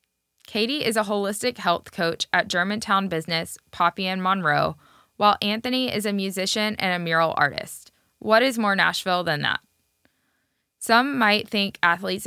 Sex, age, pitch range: female, 10-29, 175-210 Hz